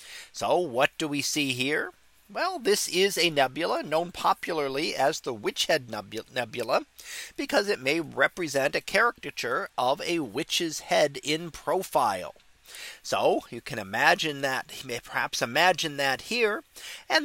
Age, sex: 40-59, male